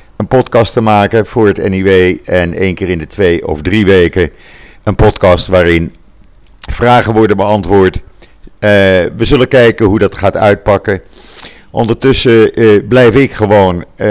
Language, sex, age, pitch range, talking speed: Dutch, male, 50-69, 95-115 Hz, 150 wpm